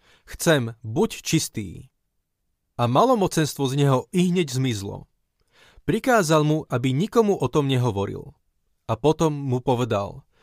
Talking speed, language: 120 wpm, Slovak